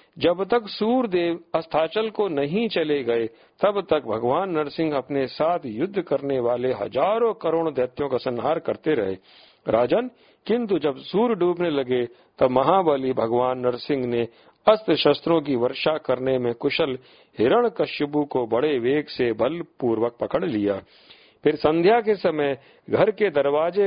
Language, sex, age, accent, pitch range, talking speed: Hindi, male, 50-69, native, 130-180 Hz, 150 wpm